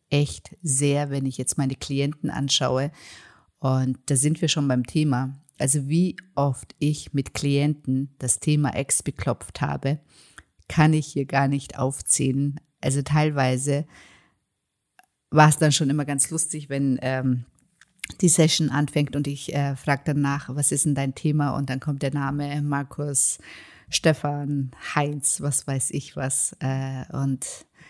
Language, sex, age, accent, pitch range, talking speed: German, female, 50-69, German, 140-155 Hz, 150 wpm